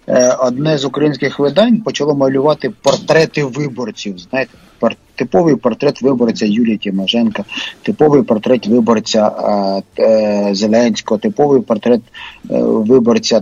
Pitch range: 125-160 Hz